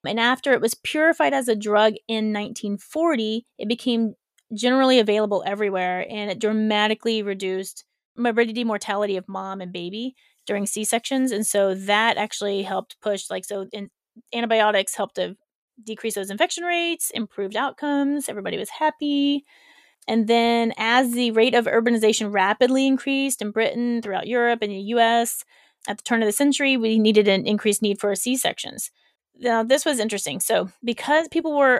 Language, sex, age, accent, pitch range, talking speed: English, female, 20-39, American, 210-250 Hz, 160 wpm